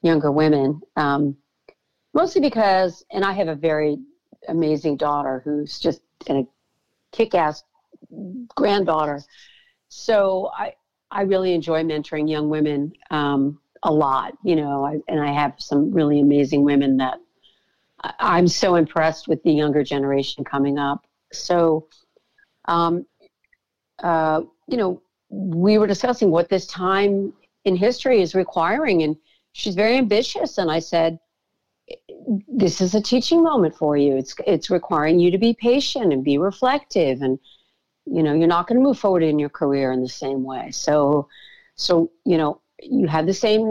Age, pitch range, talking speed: 60-79, 150-210 Hz, 155 wpm